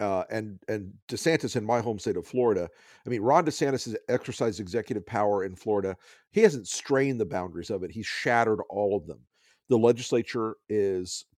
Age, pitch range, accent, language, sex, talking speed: 50-69, 105-130 Hz, American, English, male, 185 wpm